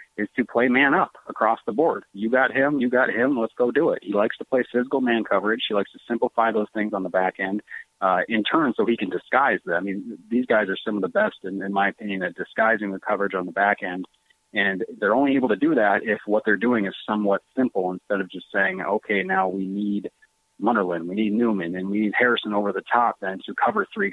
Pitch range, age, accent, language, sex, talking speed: 100-120 Hz, 30-49, American, English, male, 250 wpm